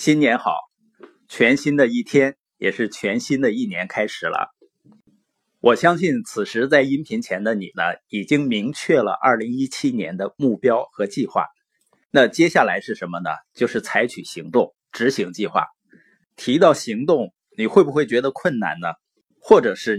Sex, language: male, Chinese